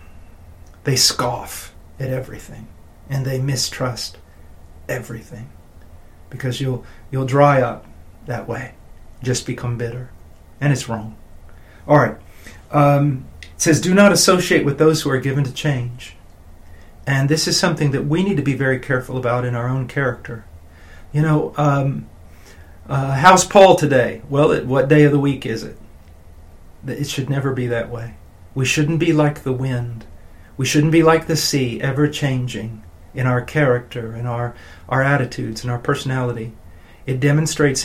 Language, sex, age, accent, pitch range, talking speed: English, male, 40-59, American, 90-145 Hz, 155 wpm